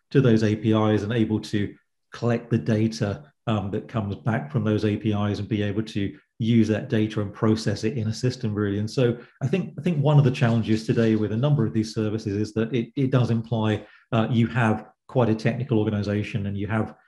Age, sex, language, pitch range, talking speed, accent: 40-59, male, English, 105-120 Hz, 220 wpm, British